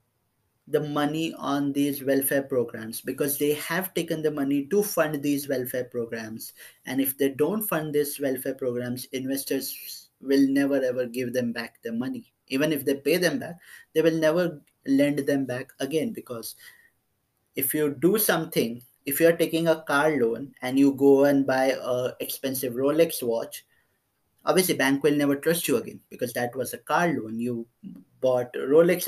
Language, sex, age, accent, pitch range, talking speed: English, male, 20-39, Indian, 125-150 Hz, 170 wpm